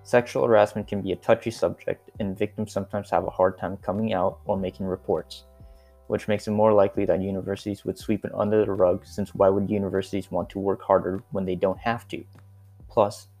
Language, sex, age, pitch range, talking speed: English, male, 20-39, 95-110 Hz, 205 wpm